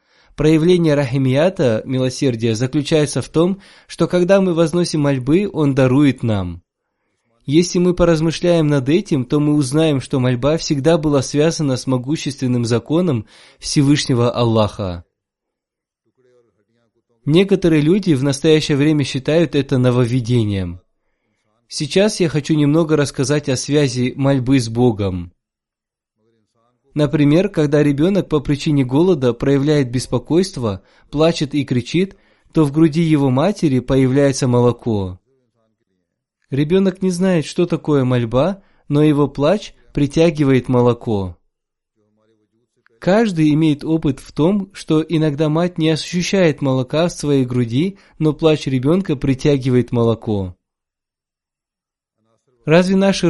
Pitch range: 125-160 Hz